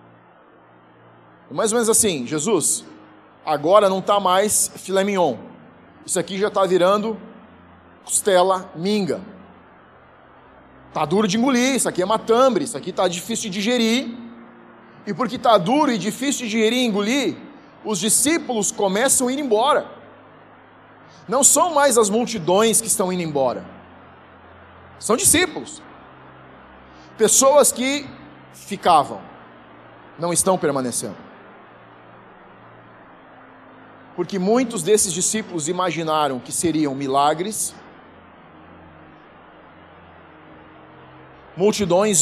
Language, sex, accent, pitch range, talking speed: Portuguese, male, Brazilian, 150-225 Hz, 105 wpm